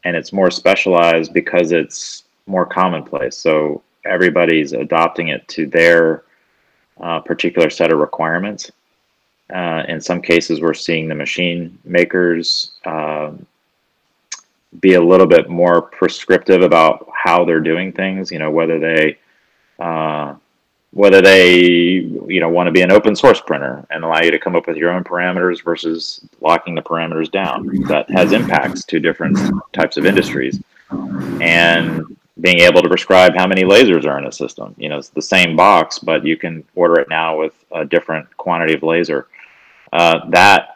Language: English